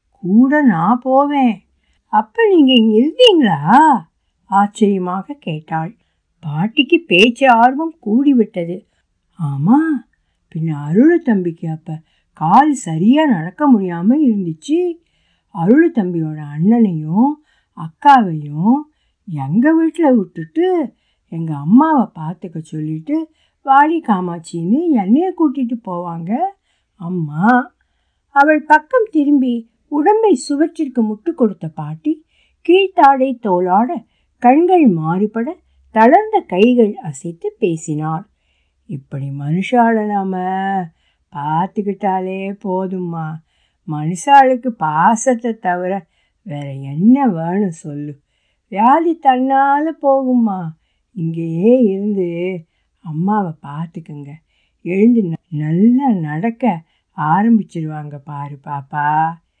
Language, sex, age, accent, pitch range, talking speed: Tamil, female, 60-79, native, 165-270 Hz, 80 wpm